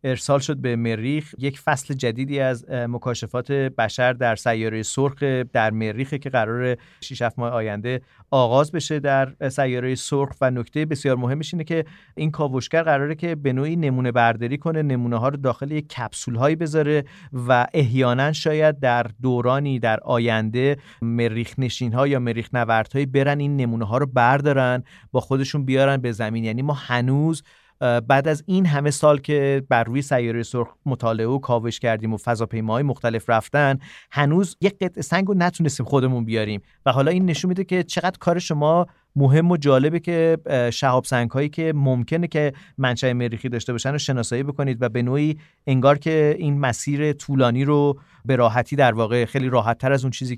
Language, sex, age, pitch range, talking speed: Persian, male, 40-59, 120-145 Hz, 170 wpm